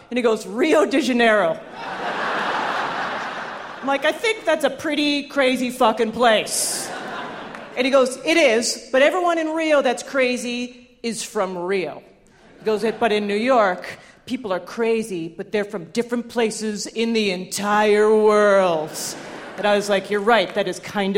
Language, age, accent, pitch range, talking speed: English, 40-59, American, 210-270 Hz, 160 wpm